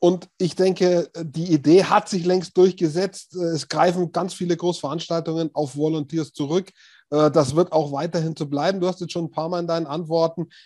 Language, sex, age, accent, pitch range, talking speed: German, male, 30-49, German, 165-190 Hz, 185 wpm